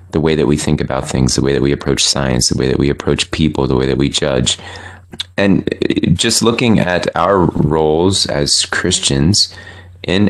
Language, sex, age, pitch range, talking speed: English, male, 30-49, 75-90 Hz, 190 wpm